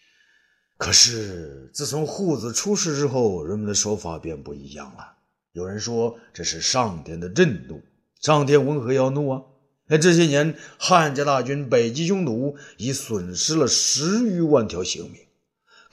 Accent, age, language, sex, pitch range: native, 50-69, Chinese, male, 115-175 Hz